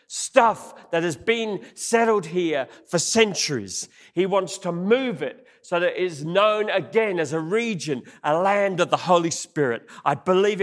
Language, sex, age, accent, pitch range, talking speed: English, male, 40-59, British, 170-220 Hz, 170 wpm